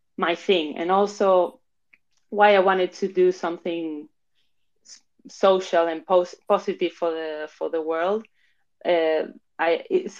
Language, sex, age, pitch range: English, female, 20-39, 165-195 Hz